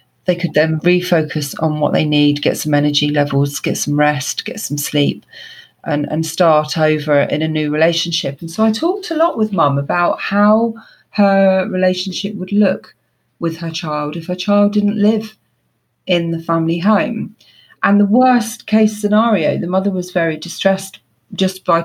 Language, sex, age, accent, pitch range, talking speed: English, female, 40-59, British, 160-210 Hz, 175 wpm